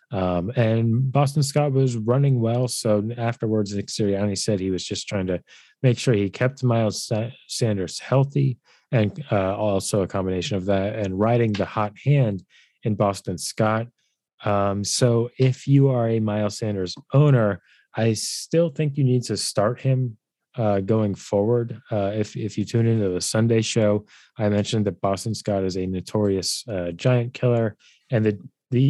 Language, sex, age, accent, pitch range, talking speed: English, male, 30-49, American, 100-125 Hz, 170 wpm